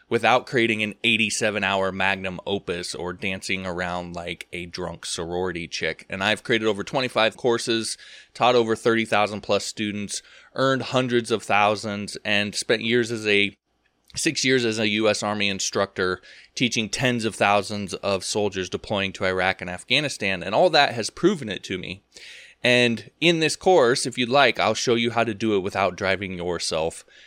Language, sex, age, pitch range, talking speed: English, male, 20-39, 100-125 Hz, 170 wpm